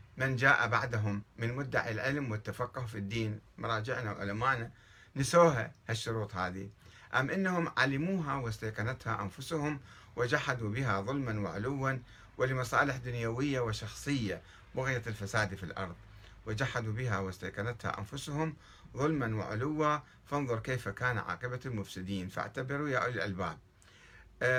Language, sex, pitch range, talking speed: Arabic, male, 105-140 Hz, 110 wpm